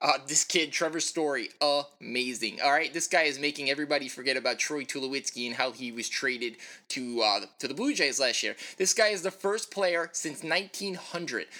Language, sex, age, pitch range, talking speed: English, male, 20-39, 150-195 Hz, 195 wpm